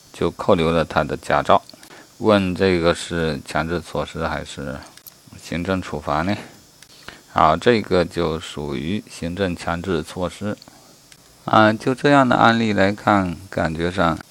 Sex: male